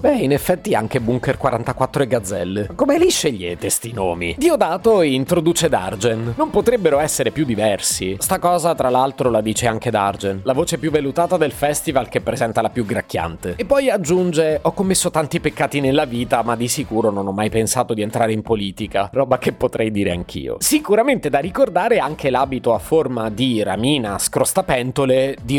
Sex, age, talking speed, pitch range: male, 30-49, 180 wpm, 110-175 Hz